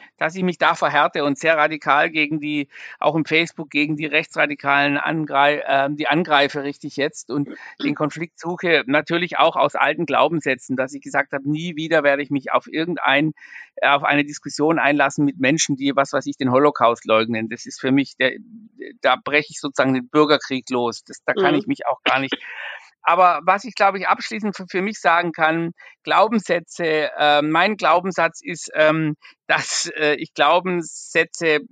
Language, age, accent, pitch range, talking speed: German, 50-69, German, 145-170 Hz, 180 wpm